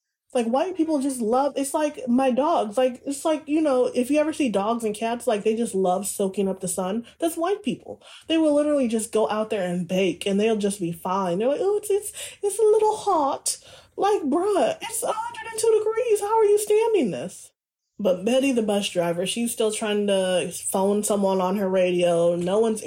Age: 20-39